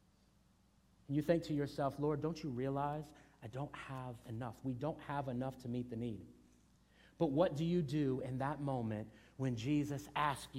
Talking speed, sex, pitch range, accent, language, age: 175 wpm, male, 120-160 Hz, American, English, 40-59